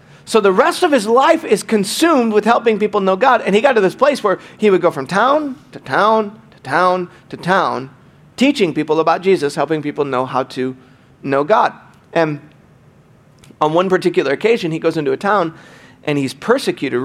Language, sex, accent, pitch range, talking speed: English, male, American, 155-210 Hz, 195 wpm